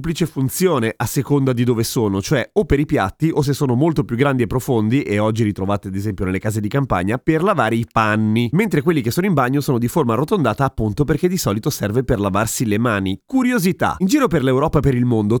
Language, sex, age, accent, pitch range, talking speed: Italian, male, 30-49, native, 110-155 Hz, 240 wpm